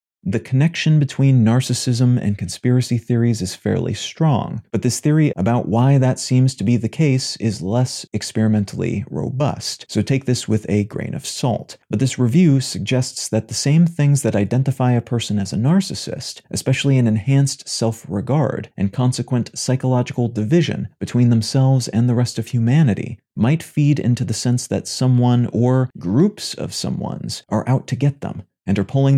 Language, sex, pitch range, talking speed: English, male, 110-135 Hz, 170 wpm